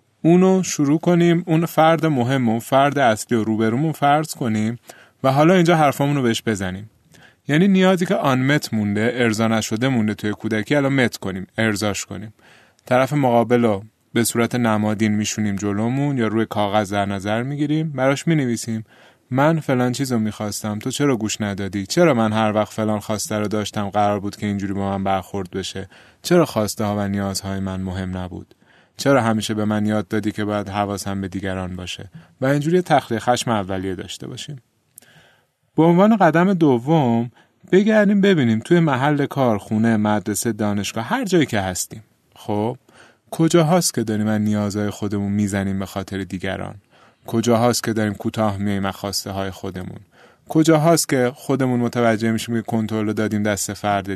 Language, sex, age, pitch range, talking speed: Persian, male, 30-49, 105-135 Hz, 165 wpm